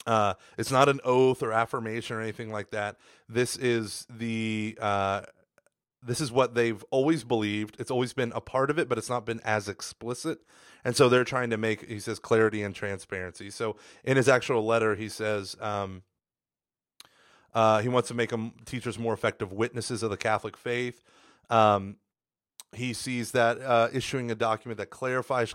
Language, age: English, 30-49